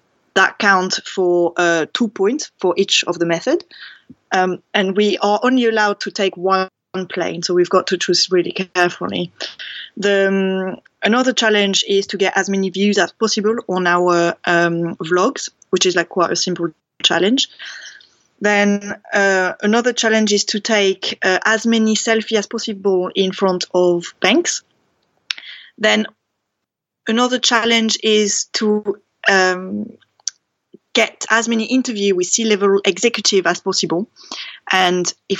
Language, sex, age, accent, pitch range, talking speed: English, female, 20-39, French, 180-215 Hz, 145 wpm